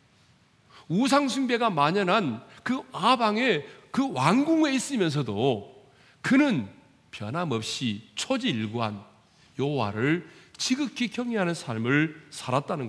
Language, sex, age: Korean, male, 40-59